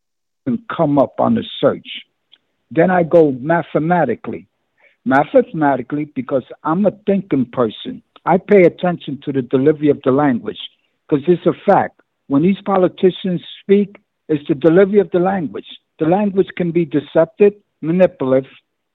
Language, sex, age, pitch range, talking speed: English, male, 60-79, 145-190 Hz, 145 wpm